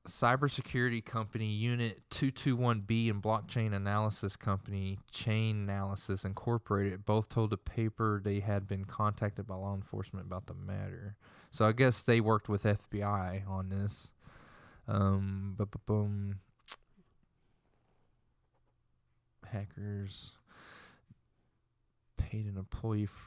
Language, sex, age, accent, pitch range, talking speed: English, male, 20-39, American, 100-115 Hz, 100 wpm